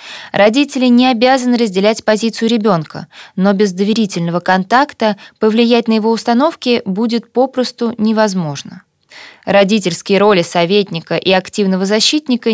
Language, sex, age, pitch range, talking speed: Russian, female, 20-39, 185-235 Hz, 110 wpm